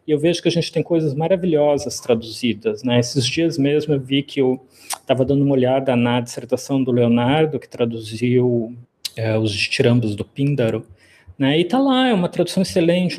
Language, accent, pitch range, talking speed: Portuguese, Brazilian, 120-165 Hz, 185 wpm